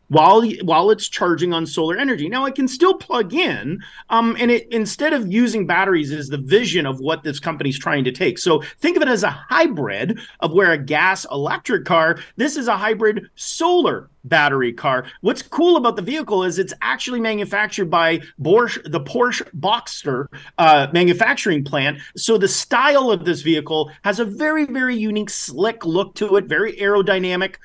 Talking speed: 185 wpm